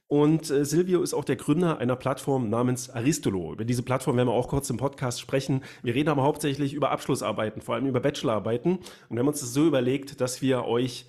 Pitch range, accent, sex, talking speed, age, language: 120-140 Hz, German, male, 215 wpm, 30-49, German